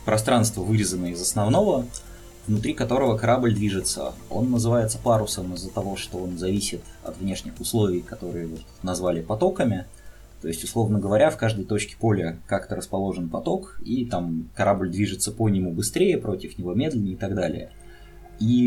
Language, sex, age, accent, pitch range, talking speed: Russian, male, 20-39, native, 90-110 Hz, 150 wpm